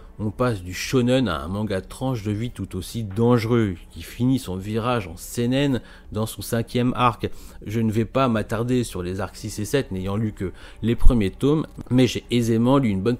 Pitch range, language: 95-125 Hz, French